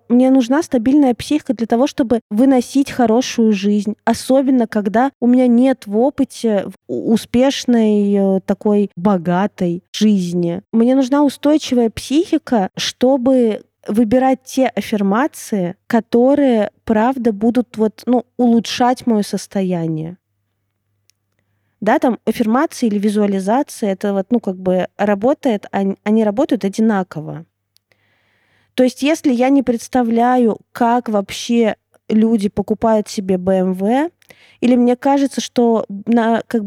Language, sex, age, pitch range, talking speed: Russian, female, 20-39, 200-245 Hz, 115 wpm